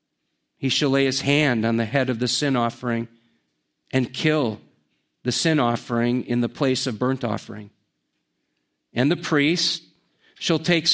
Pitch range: 120-155 Hz